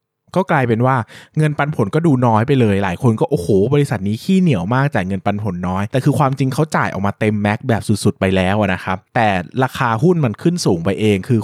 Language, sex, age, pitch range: Thai, male, 20-39, 100-135 Hz